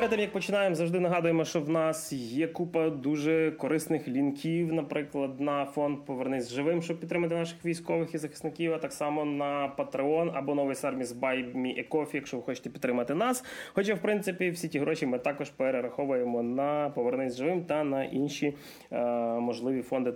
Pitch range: 135-185 Hz